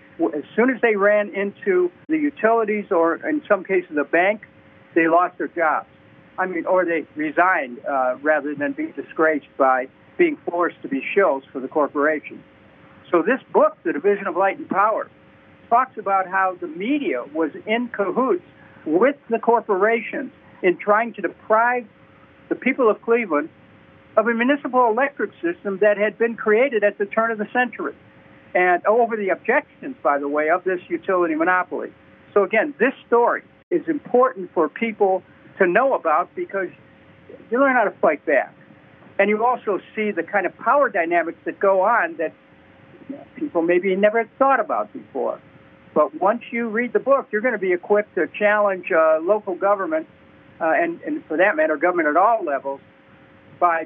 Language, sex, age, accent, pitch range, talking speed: English, male, 60-79, American, 175-250 Hz, 175 wpm